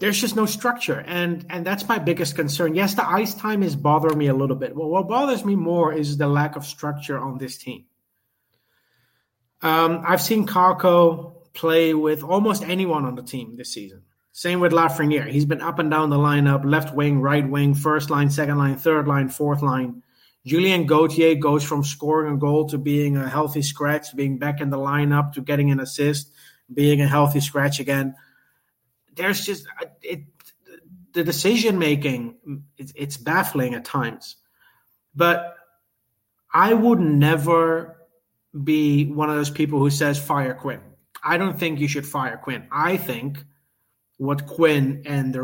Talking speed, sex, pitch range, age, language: 170 wpm, male, 140-165 Hz, 30-49, English